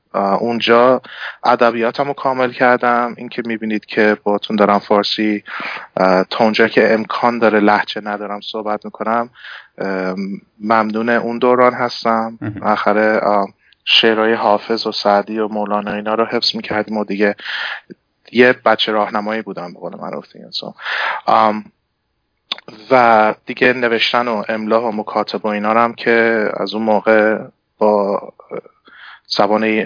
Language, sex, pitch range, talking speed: Persian, male, 105-125 Hz, 120 wpm